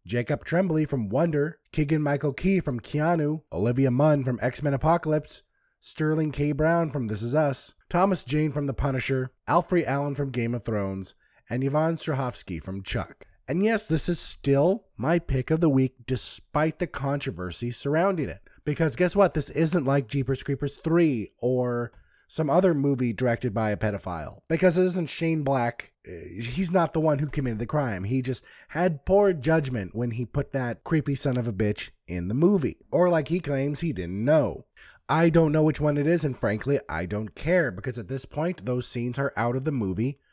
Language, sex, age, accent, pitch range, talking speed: English, male, 20-39, American, 120-160 Hz, 190 wpm